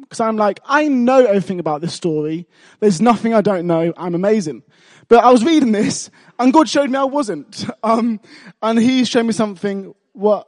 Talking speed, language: 195 wpm, English